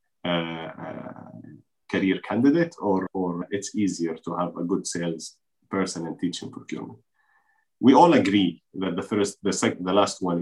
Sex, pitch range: male, 85-110 Hz